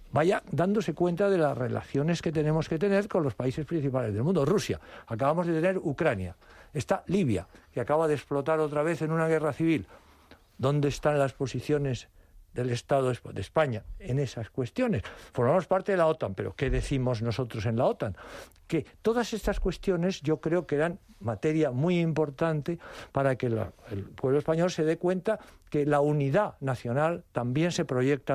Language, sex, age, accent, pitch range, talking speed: Spanish, male, 60-79, Spanish, 125-170 Hz, 175 wpm